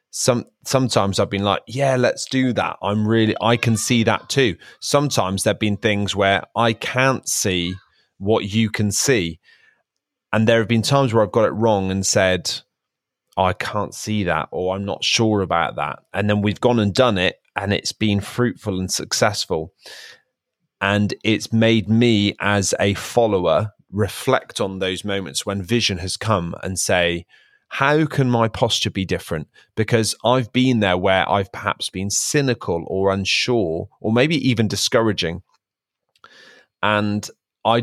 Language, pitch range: English, 95-115 Hz